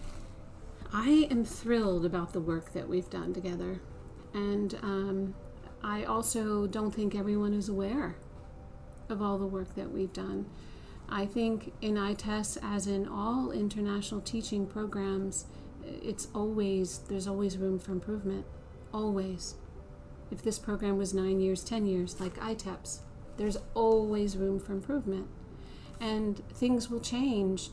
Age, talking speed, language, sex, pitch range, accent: 40-59, 135 wpm, English, female, 195-225 Hz, American